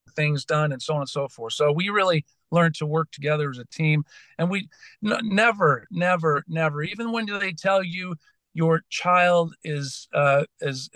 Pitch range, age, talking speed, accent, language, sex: 130-160 Hz, 50-69, 185 wpm, American, English, male